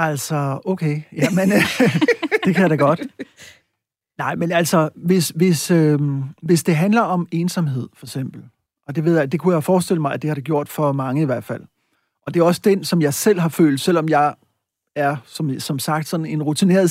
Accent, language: native, Danish